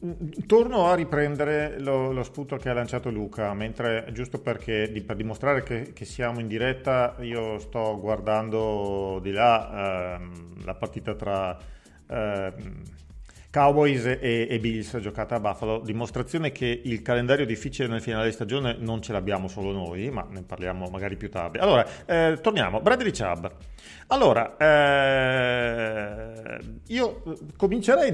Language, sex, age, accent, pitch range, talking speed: Italian, male, 40-59, native, 105-135 Hz, 145 wpm